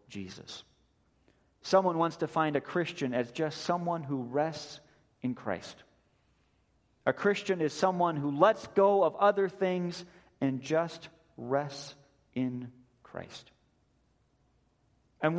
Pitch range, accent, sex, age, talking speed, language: 130-165 Hz, American, male, 40-59, 115 wpm, English